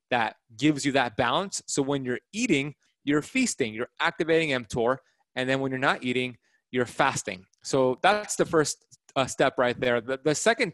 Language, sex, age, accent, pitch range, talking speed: English, male, 30-49, American, 125-160 Hz, 185 wpm